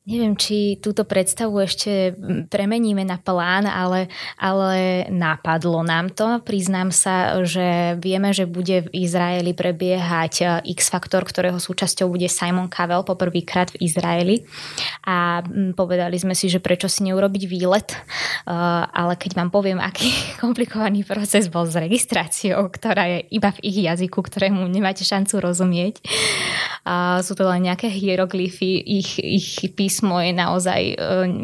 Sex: female